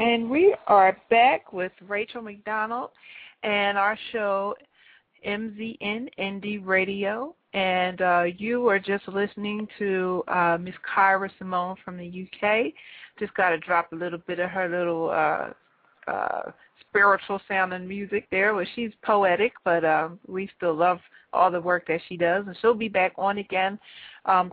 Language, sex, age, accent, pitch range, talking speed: English, female, 40-59, American, 180-210 Hz, 160 wpm